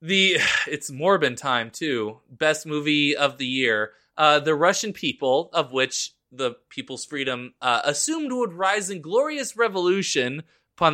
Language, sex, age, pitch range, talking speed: English, male, 20-39, 130-190 Hz, 150 wpm